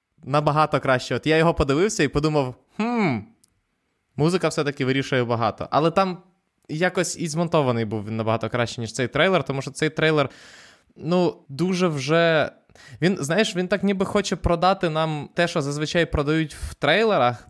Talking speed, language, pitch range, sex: 160 wpm, Ukrainian, 130-160 Hz, male